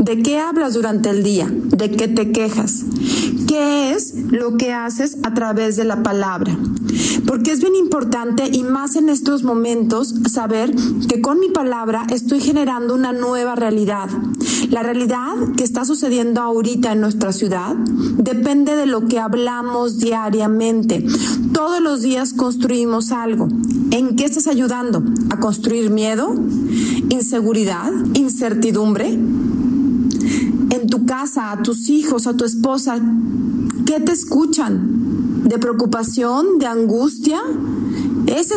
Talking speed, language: 130 wpm, Spanish